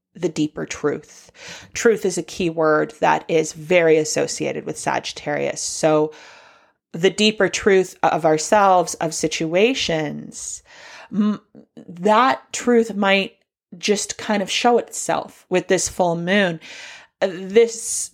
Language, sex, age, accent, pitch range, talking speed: English, female, 30-49, American, 165-215 Hz, 115 wpm